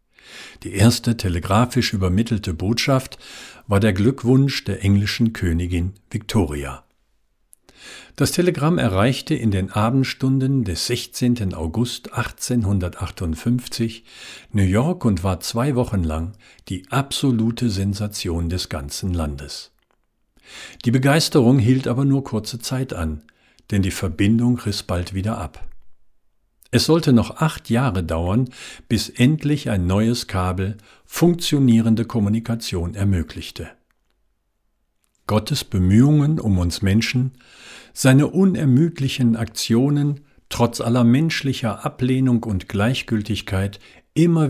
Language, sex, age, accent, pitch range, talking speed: German, male, 50-69, German, 95-130 Hz, 105 wpm